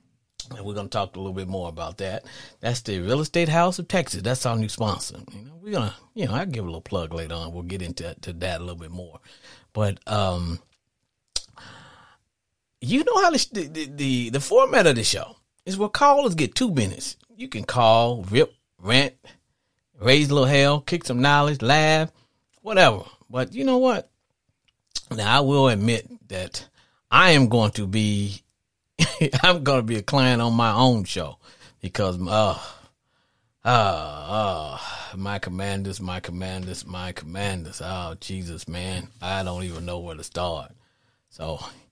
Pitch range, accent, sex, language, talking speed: 95-130 Hz, American, male, English, 175 wpm